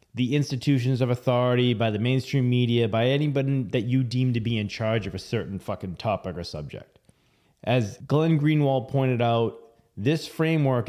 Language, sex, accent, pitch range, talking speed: English, male, American, 115-145 Hz, 170 wpm